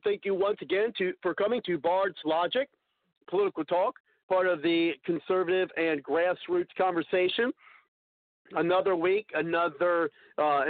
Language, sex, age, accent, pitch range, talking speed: English, male, 50-69, American, 150-205 Hz, 125 wpm